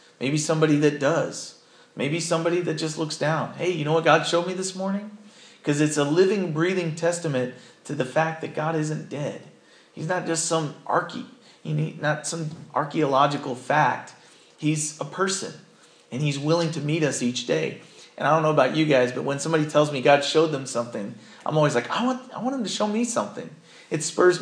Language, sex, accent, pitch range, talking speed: English, male, American, 125-160 Hz, 200 wpm